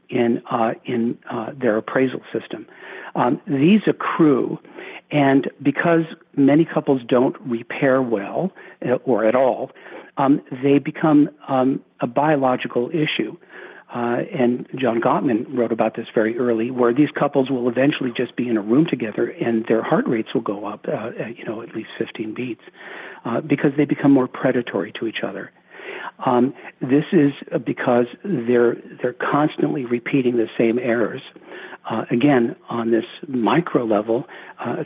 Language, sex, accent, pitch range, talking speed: English, male, American, 120-145 Hz, 150 wpm